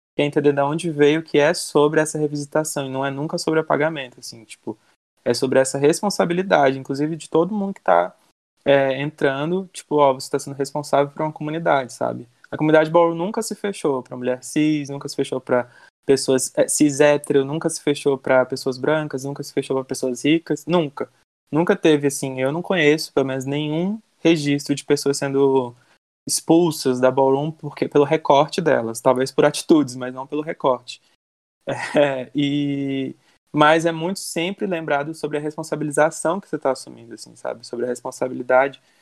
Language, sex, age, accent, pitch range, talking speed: Portuguese, male, 20-39, Brazilian, 135-155 Hz, 175 wpm